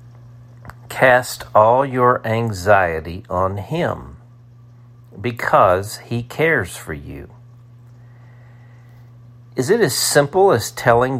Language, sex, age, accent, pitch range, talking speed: English, male, 50-69, American, 110-120 Hz, 90 wpm